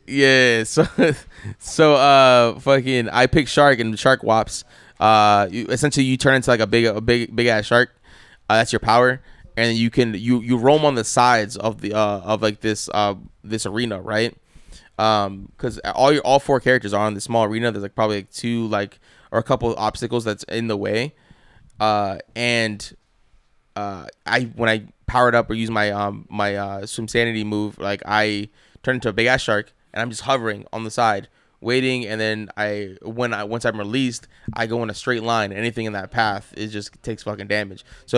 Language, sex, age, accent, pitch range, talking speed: English, male, 20-39, American, 105-125 Hz, 210 wpm